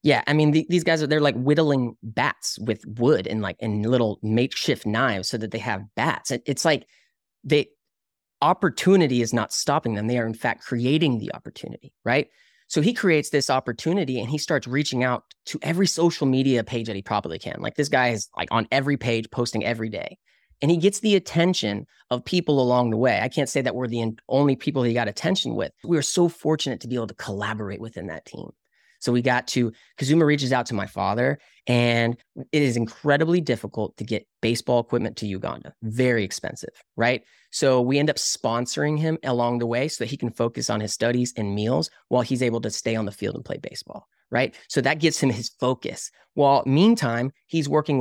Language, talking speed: English, 210 wpm